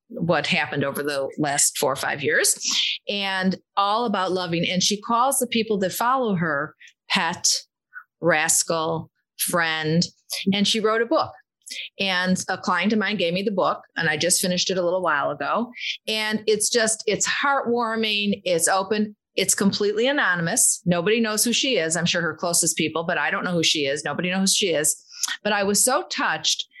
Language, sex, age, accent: English, female, 40-59, American